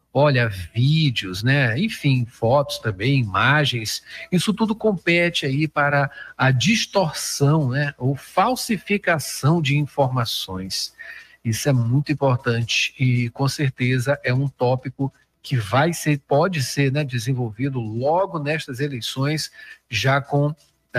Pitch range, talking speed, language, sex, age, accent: 130-175 Hz, 115 wpm, Portuguese, male, 50-69, Brazilian